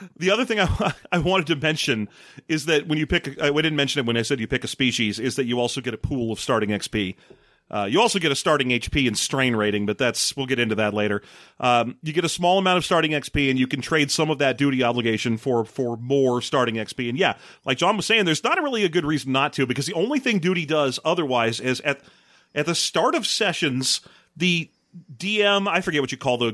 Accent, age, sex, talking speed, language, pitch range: American, 40-59, male, 250 wpm, English, 130-175 Hz